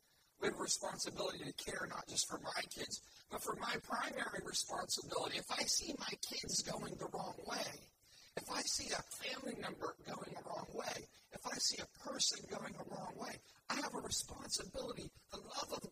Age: 50-69